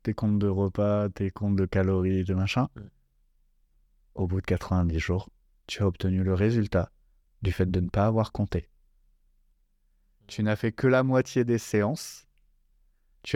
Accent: French